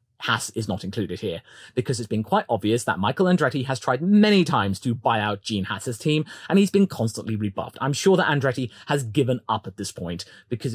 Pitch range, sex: 120-195 Hz, male